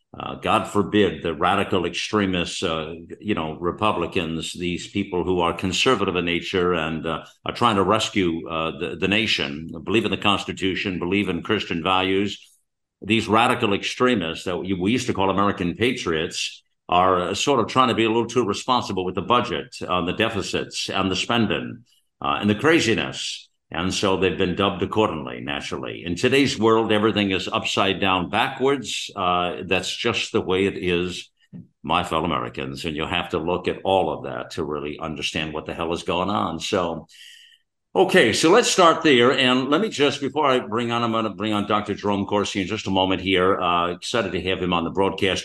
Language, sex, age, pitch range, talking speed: English, male, 60-79, 85-110 Hz, 195 wpm